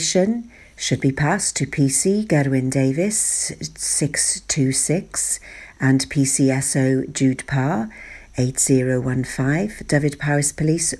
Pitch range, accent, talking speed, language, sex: 135-190 Hz, British, 85 wpm, English, female